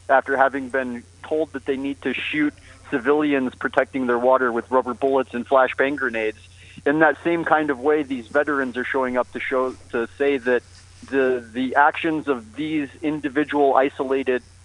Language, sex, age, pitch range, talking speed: English, male, 30-49, 115-135 Hz, 170 wpm